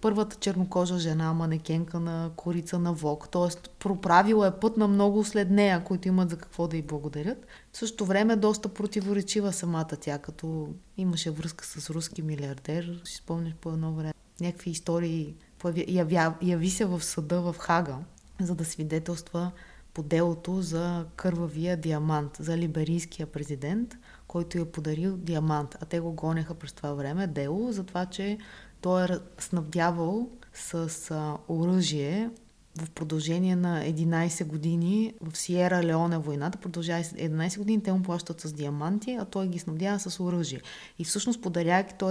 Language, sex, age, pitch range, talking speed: Bulgarian, female, 20-39, 160-195 Hz, 150 wpm